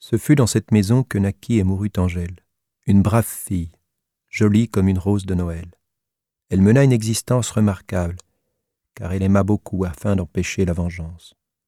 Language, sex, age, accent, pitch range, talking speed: French, male, 40-59, French, 90-105 Hz, 165 wpm